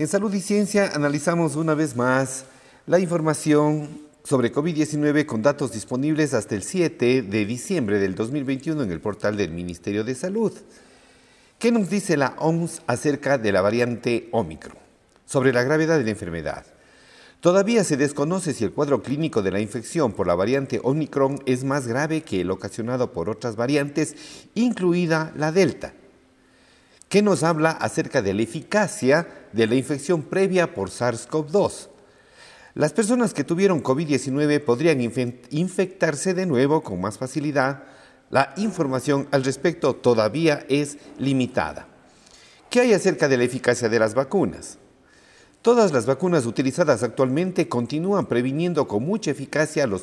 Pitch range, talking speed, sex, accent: 125-180 Hz, 150 wpm, male, Mexican